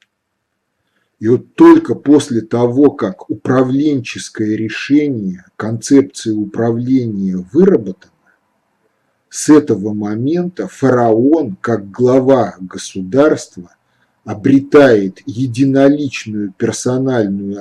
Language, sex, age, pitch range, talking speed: Russian, male, 50-69, 100-135 Hz, 70 wpm